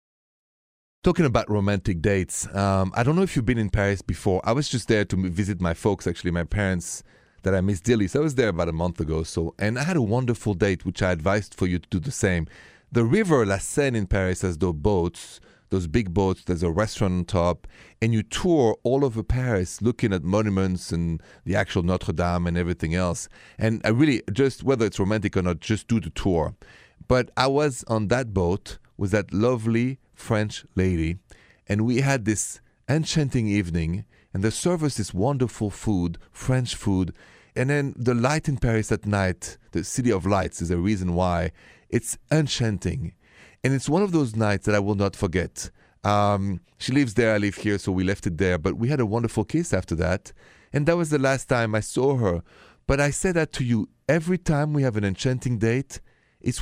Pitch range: 90-125 Hz